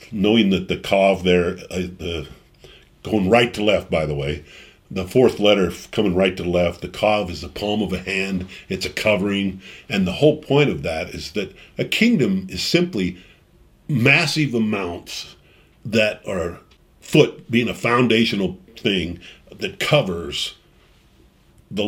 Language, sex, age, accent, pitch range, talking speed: English, male, 50-69, American, 90-120 Hz, 150 wpm